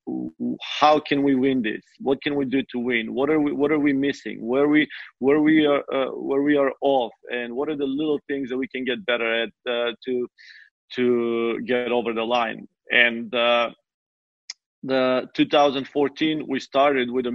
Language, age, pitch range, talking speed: English, 40-59, 125-140 Hz, 185 wpm